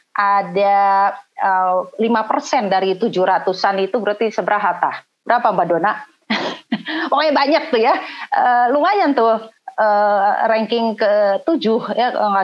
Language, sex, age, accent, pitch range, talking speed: Indonesian, female, 30-49, native, 180-215 Hz, 110 wpm